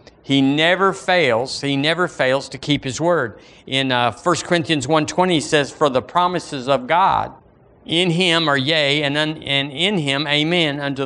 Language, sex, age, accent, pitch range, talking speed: English, male, 50-69, American, 120-145 Hz, 175 wpm